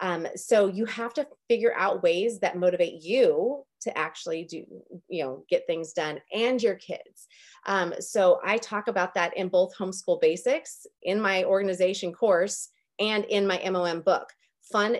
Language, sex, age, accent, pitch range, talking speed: English, female, 30-49, American, 180-240 Hz, 170 wpm